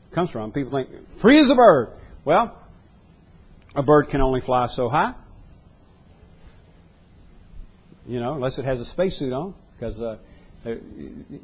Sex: male